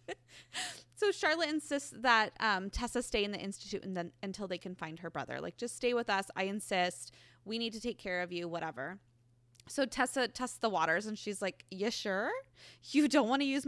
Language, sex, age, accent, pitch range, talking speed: English, female, 20-39, American, 185-280 Hz, 210 wpm